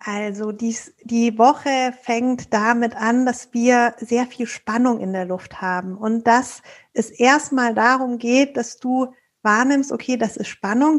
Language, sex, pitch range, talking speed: German, female, 235-275 Hz, 155 wpm